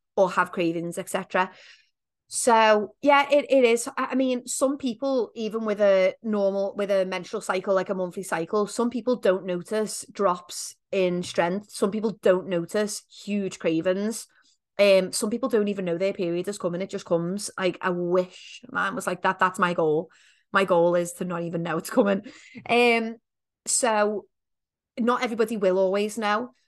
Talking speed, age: 175 wpm, 30-49